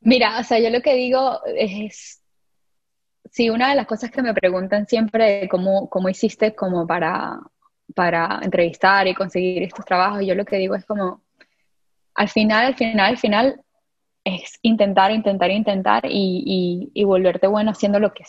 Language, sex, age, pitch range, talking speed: Spanish, female, 10-29, 185-220 Hz, 175 wpm